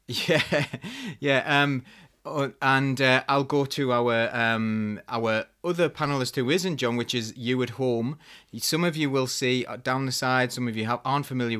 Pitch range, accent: 105-130 Hz, British